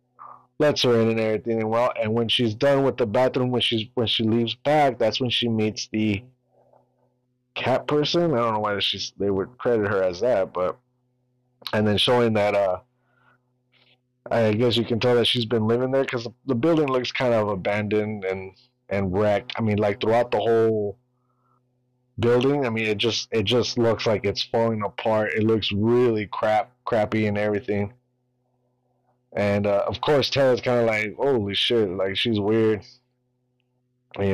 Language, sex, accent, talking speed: English, male, American, 180 wpm